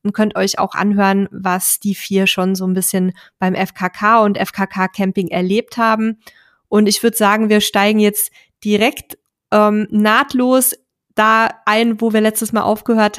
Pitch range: 200-225 Hz